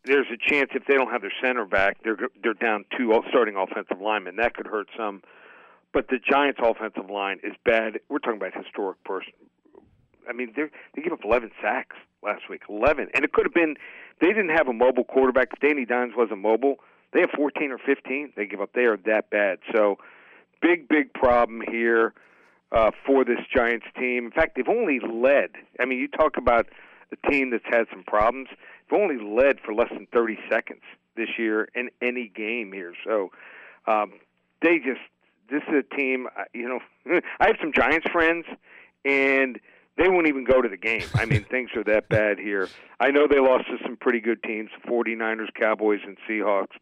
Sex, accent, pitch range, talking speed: male, American, 110-140 Hz, 195 wpm